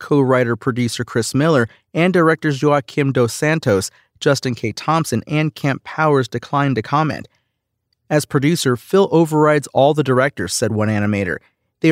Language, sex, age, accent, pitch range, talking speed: English, male, 40-59, American, 120-150 Hz, 140 wpm